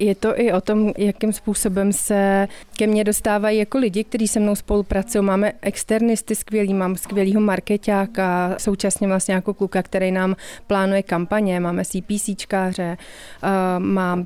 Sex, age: female, 30-49